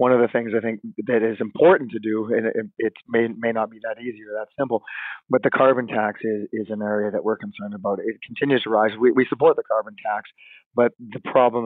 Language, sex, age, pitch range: English, male, 40-59, 110-120 Hz